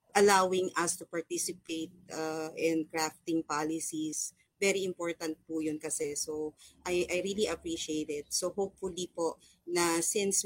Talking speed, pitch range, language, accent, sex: 140 wpm, 155-180 Hz, Filipino, native, female